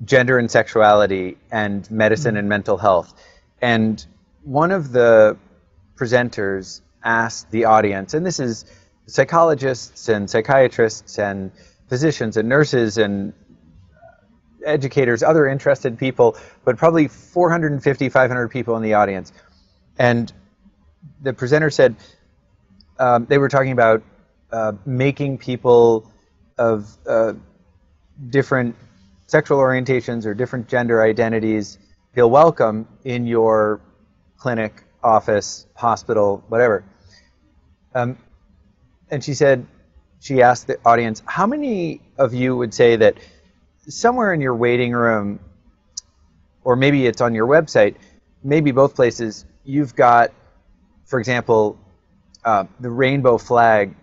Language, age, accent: English, 30-49, American